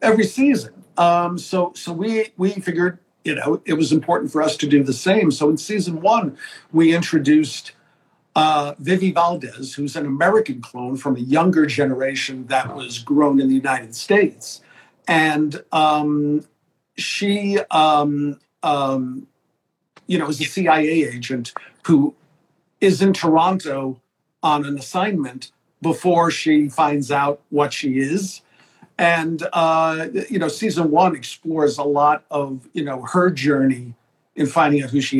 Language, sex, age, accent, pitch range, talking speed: English, male, 50-69, American, 135-175 Hz, 150 wpm